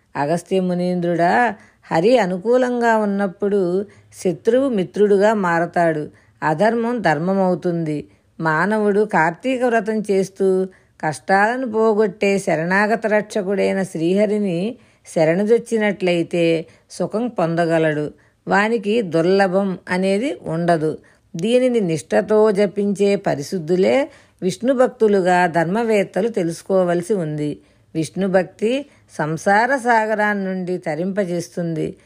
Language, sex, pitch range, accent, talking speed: Telugu, female, 170-215 Hz, native, 70 wpm